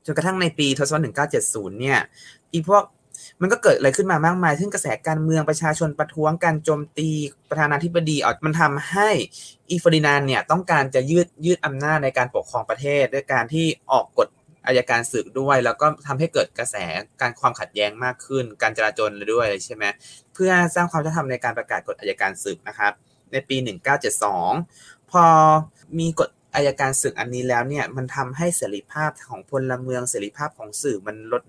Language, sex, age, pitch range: Thai, male, 20-39, 125-160 Hz